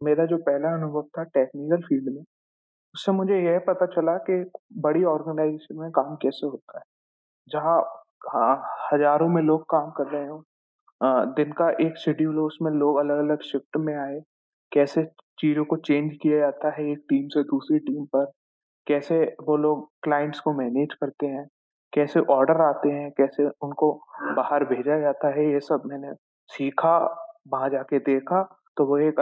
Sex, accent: male, native